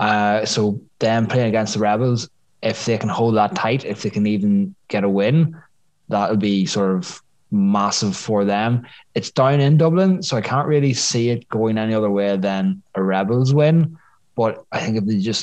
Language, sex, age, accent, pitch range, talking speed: English, male, 20-39, Irish, 105-125 Hz, 200 wpm